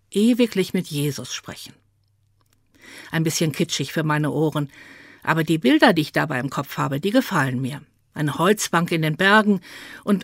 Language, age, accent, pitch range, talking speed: German, 50-69, German, 145-215 Hz, 165 wpm